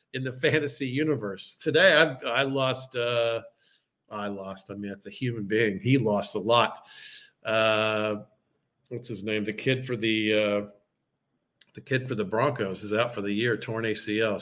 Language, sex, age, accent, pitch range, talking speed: English, male, 50-69, American, 110-155 Hz, 175 wpm